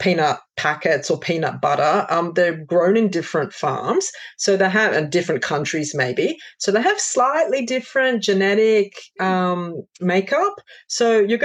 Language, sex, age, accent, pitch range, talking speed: English, female, 30-49, Australian, 155-195 Hz, 145 wpm